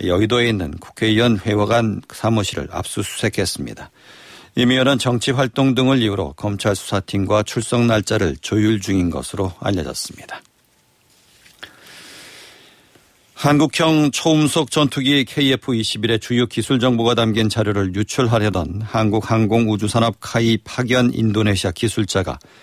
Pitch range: 105-120 Hz